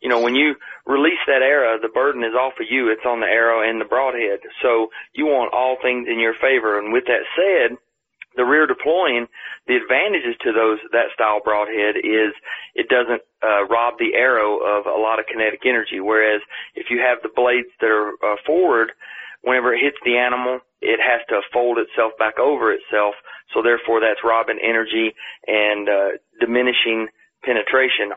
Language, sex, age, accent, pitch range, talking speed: English, male, 30-49, American, 110-125 Hz, 185 wpm